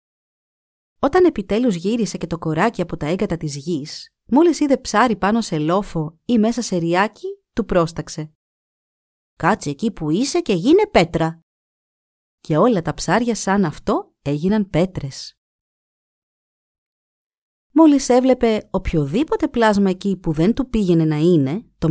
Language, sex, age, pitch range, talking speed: Greek, female, 30-49, 160-245 Hz, 135 wpm